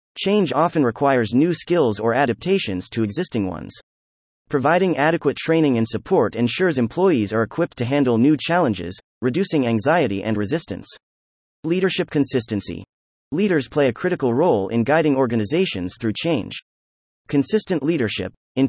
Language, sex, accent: English, male, American